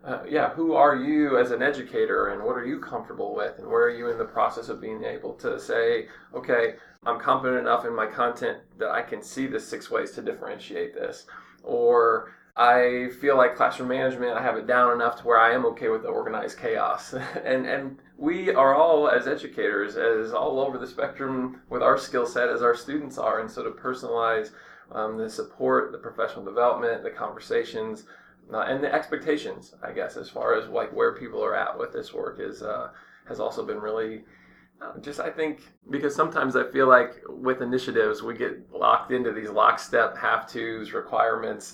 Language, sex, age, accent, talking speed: English, male, 20-39, American, 195 wpm